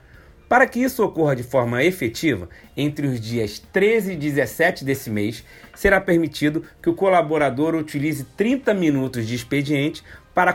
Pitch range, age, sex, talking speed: 130-165 Hz, 30-49, male, 150 wpm